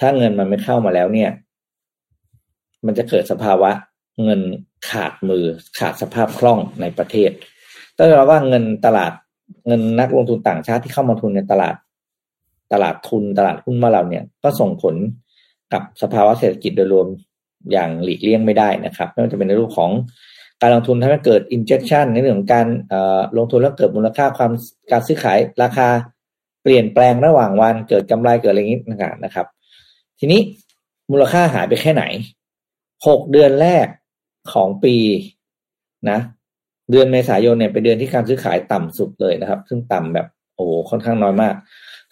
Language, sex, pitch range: Thai, male, 100-130 Hz